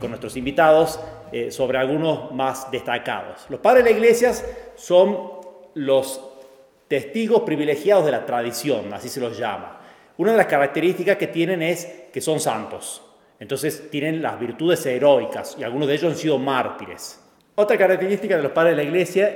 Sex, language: male, Spanish